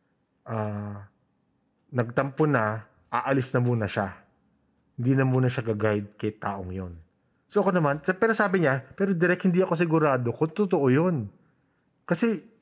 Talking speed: 145 wpm